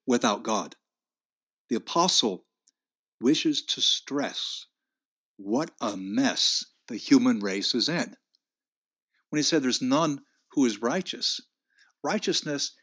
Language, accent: English, American